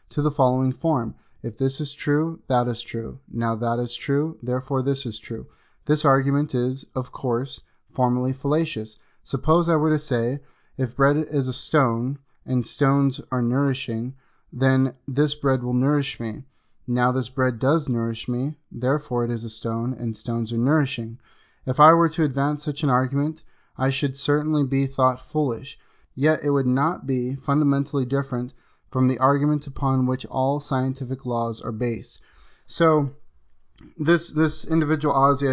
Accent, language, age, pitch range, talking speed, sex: American, English, 30-49, 125-150 Hz, 165 wpm, male